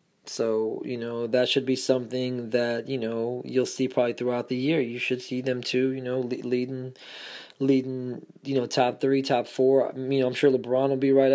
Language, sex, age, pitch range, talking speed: English, male, 20-39, 125-150 Hz, 220 wpm